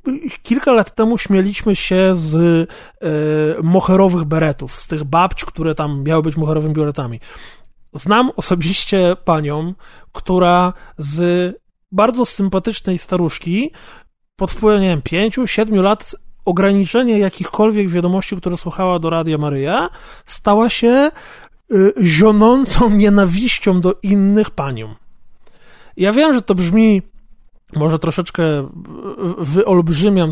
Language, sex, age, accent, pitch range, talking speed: Polish, male, 20-39, native, 160-205 Hz, 110 wpm